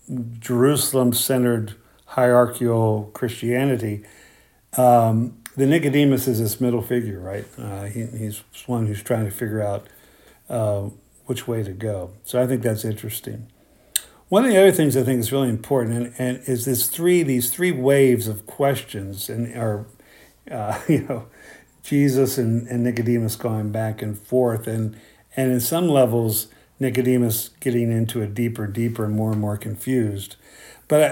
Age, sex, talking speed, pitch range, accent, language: 50-69, male, 155 wpm, 110-130 Hz, American, English